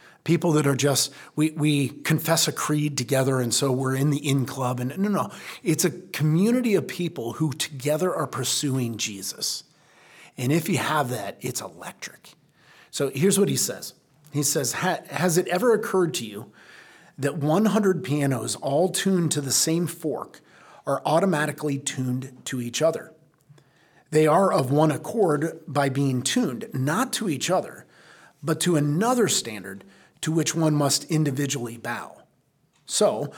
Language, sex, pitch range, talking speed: English, male, 140-170 Hz, 155 wpm